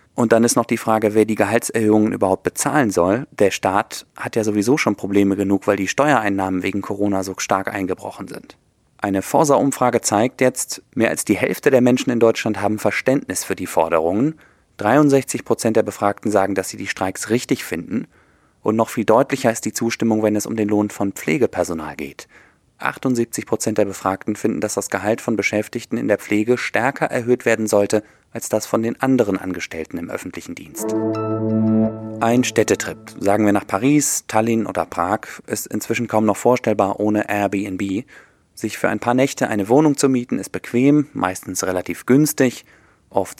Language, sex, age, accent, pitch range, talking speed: German, male, 30-49, German, 100-120 Hz, 180 wpm